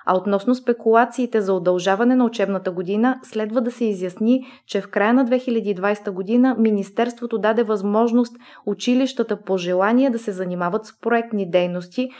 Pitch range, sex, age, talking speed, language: 190-235 Hz, female, 20-39, 150 wpm, Bulgarian